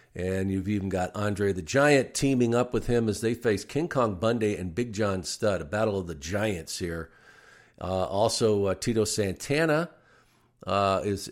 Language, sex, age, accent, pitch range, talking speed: English, male, 50-69, American, 95-120 Hz, 180 wpm